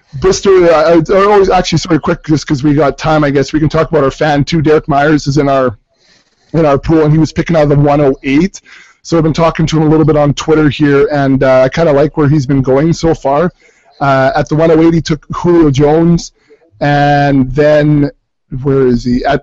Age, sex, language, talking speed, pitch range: 20-39, male, English, 230 wpm, 135-160 Hz